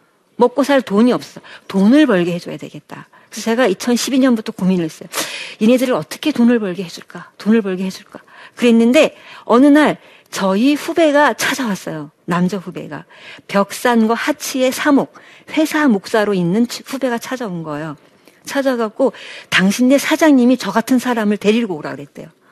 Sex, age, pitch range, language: female, 50-69, 185-255 Hz, Korean